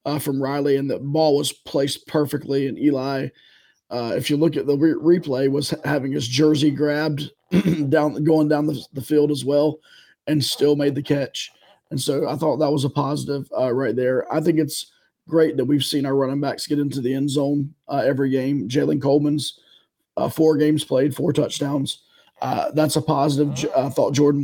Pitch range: 140-160 Hz